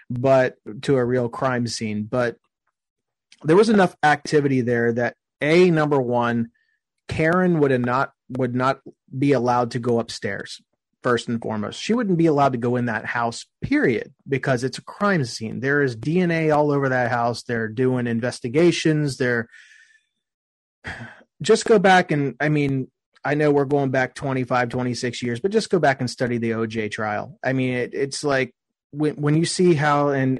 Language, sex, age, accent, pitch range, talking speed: English, male, 30-49, American, 120-150 Hz, 175 wpm